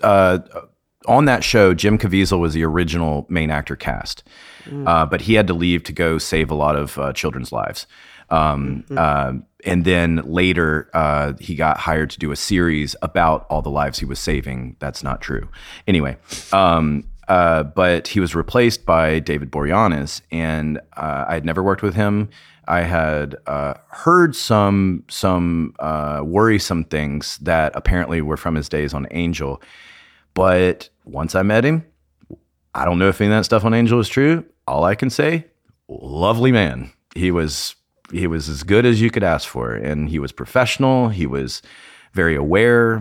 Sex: male